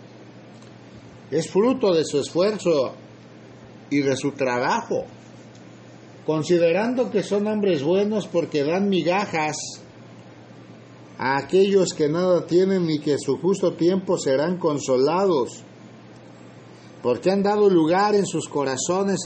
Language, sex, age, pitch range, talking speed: Spanish, male, 50-69, 135-195 Hz, 110 wpm